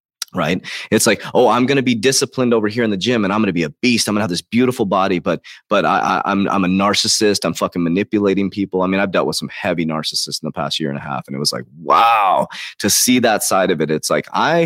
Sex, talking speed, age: male, 275 wpm, 30-49